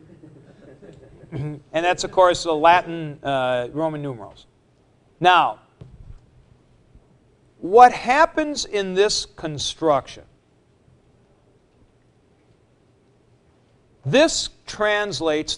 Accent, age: American, 50-69